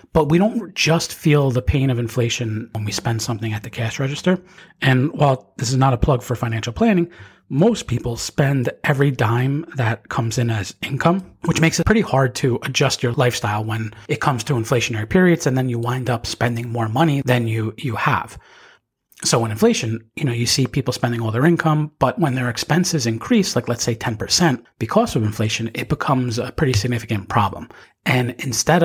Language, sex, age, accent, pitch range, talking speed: English, male, 30-49, American, 115-145 Hz, 200 wpm